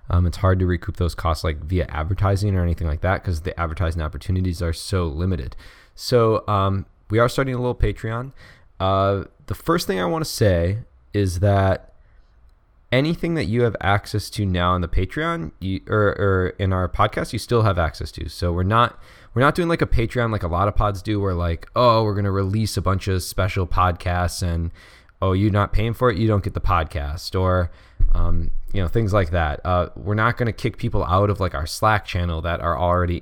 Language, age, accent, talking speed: English, 20-39, American, 220 wpm